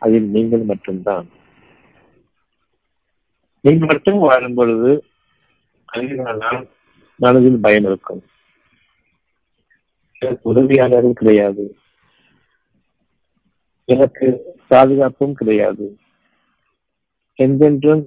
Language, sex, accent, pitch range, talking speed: Tamil, male, native, 110-130 Hz, 55 wpm